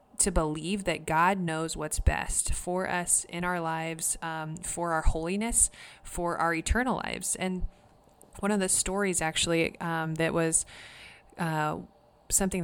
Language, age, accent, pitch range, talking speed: English, 20-39, American, 160-185 Hz, 145 wpm